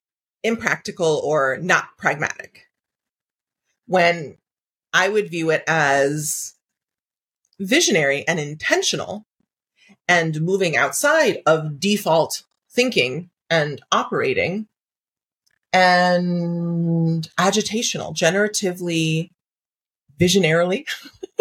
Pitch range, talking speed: 165-220 Hz, 70 wpm